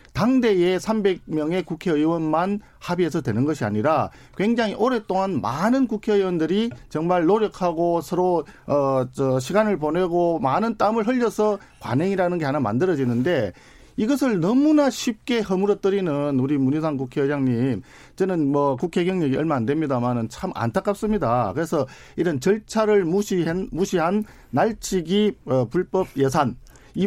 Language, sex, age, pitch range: Korean, male, 50-69, 135-205 Hz